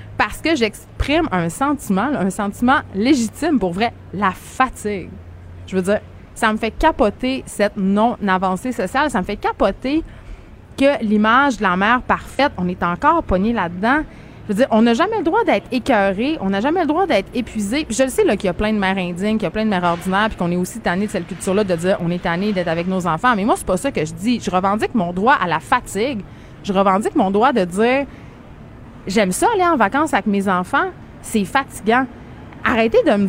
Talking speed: 225 wpm